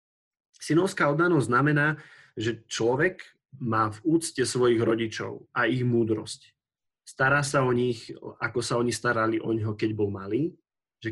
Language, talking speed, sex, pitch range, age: Slovak, 145 wpm, male, 110-140 Hz, 30-49